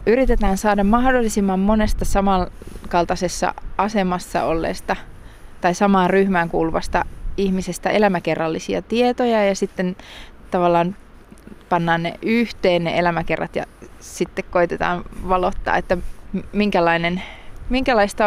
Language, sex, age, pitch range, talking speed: Finnish, female, 20-39, 170-200 Hz, 90 wpm